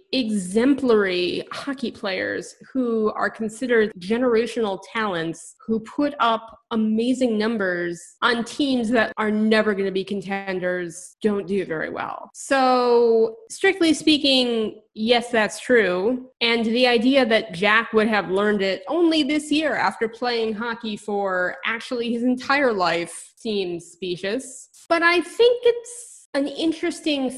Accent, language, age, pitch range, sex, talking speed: American, English, 20-39, 195-255 Hz, female, 130 wpm